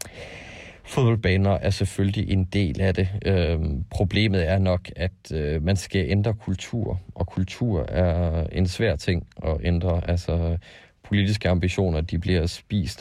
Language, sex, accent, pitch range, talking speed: Danish, male, native, 85-95 Hz, 130 wpm